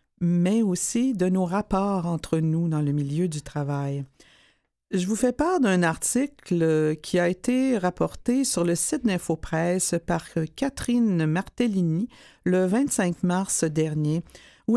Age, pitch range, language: 50-69, 165-220 Hz, French